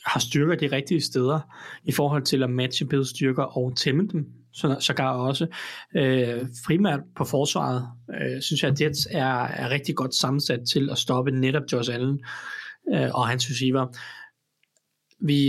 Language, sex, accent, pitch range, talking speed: Danish, male, native, 125-155 Hz, 175 wpm